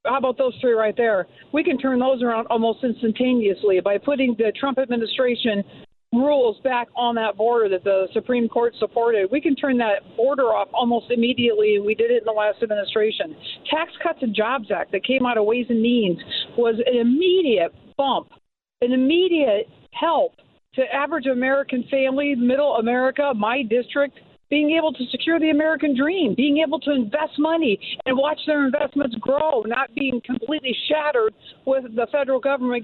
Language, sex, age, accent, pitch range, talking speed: English, female, 50-69, American, 235-295 Hz, 175 wpm